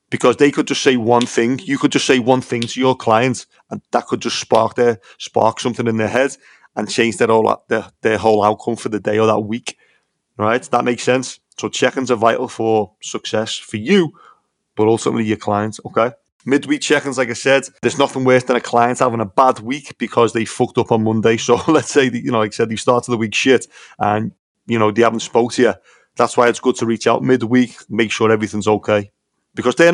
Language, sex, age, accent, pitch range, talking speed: English, male, 30-49, British, 110-130 Hz, 230 wpm